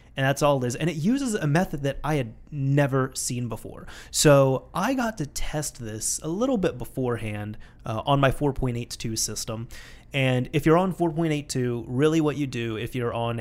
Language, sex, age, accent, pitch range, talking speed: English, male, 30-49, American, 115-150 Hz, 190 wpm